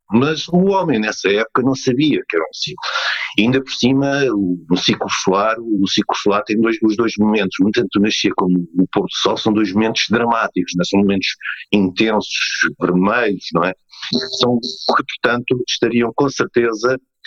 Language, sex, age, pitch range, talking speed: Portuguese, male, 50-69, 100-130 Hz, 170 wpm